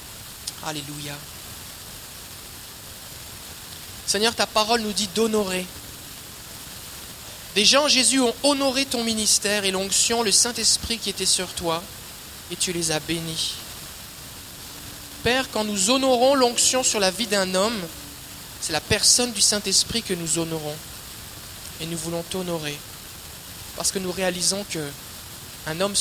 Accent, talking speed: French, 125 wpm